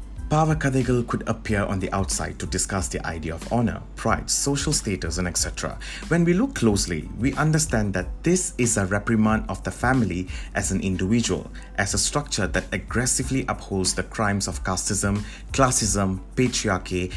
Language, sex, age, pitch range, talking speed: Malay, male, 30-49, 90-120 Hz, 165 wpm